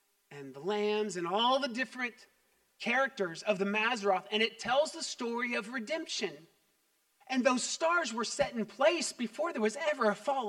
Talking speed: 175 wpm